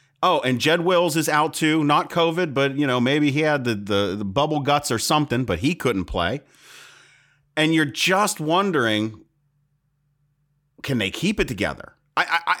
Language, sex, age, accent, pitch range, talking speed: English, male, 40-59, American, 130-175 Hz, 170 wpm